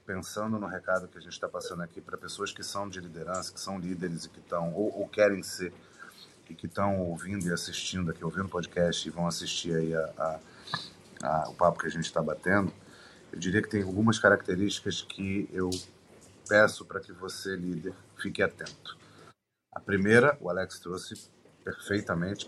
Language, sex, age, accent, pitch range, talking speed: Portuguese, male, 40-59, Brazilian, 90-105 Hz, 185 wpm